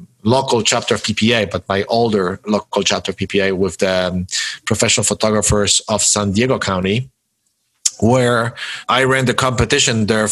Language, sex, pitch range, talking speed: English, male, 100-125 Hz, 150 wpm